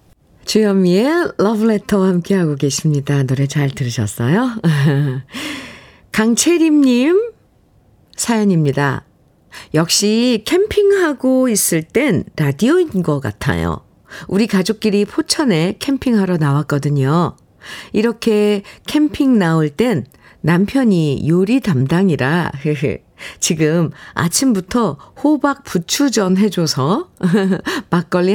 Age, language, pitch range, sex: 50-69, Korean, 155-235 Hz, female